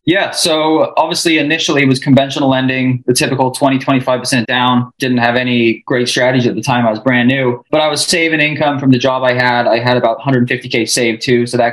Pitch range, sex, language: 120-140 Hz, male, English